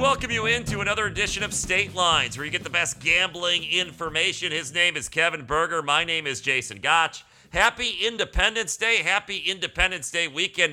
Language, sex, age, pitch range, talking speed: English, male, 40-59, 125-170 Hz, 180 wpm